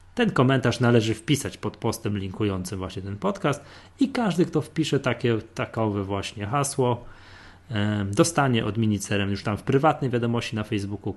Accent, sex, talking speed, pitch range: native, male, 150 wpm, 95-115 Hz